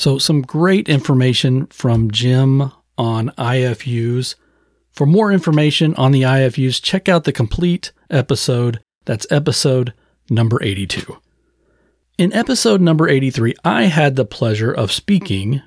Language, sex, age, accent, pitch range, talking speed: English, male, 40-59, American, 115-150 Hz, 125 wpm